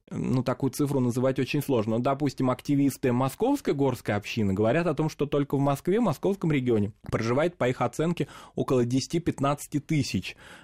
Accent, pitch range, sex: native, 115-145 Hz, male